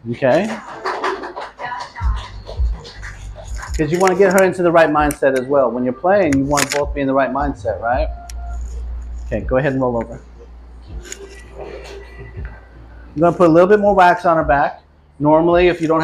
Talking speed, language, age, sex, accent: 170 wpm, English, 40-59, male, American